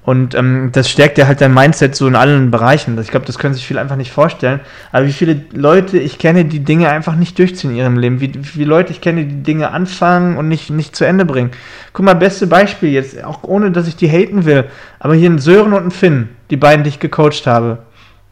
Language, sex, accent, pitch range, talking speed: German, male, German, 140-180 Hz, 240 wpm